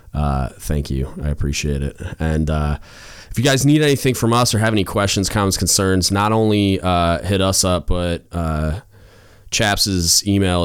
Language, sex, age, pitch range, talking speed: English, male, 20-39, 80-105 Hz, 175 wpm